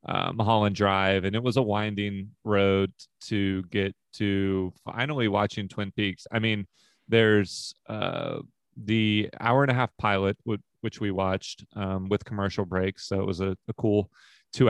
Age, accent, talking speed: 30-49, American, 165 wpm